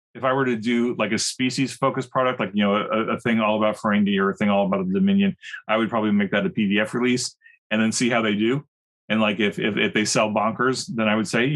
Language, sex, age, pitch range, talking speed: English, male, 30-49, 105-150 Hz, 270 wpm